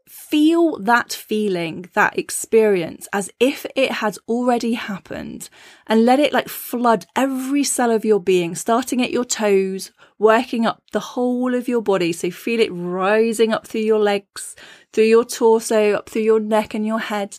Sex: female